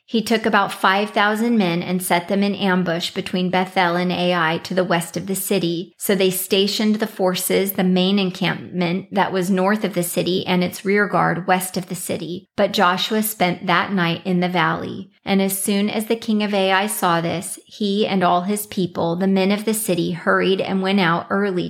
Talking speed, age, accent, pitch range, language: 205 wpm, 30-49, American, 180-200 Hz, English